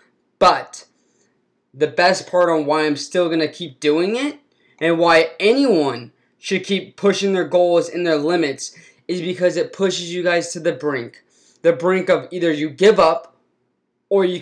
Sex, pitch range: male, 165-215 Hz